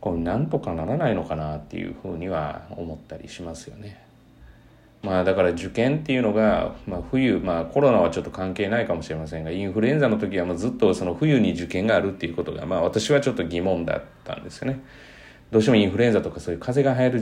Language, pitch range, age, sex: Japanese, 80-110 Hz, 30-49, male